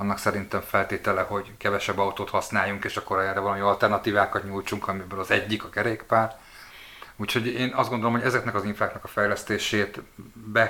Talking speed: 165 wpm